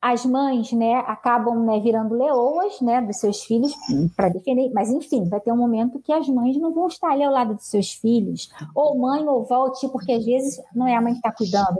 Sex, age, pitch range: female, 20-39, 230-290 Hz